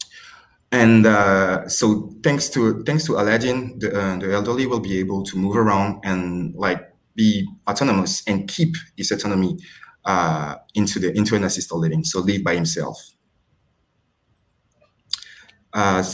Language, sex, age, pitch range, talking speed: English, male, 20-39, 90-110 Hz, 140 wpm